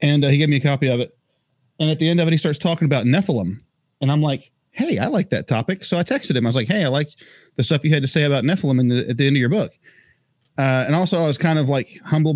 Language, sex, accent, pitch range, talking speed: English, male, American, 130-160 Hz, 295 wpm